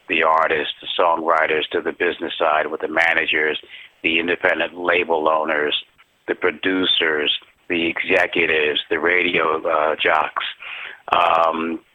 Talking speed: 120 wpm